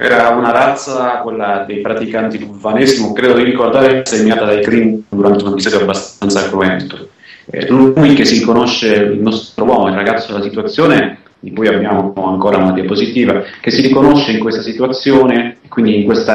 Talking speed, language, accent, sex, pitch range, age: 165 wpm, Italian, native, male, 110-135 Hz, 30-49